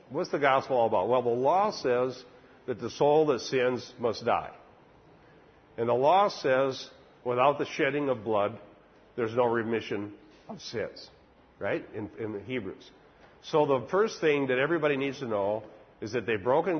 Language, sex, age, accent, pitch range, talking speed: English, male, 50-69, American, 105-145 Hz, 170 wpm